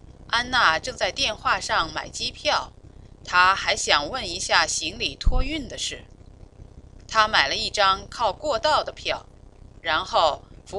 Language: Chinese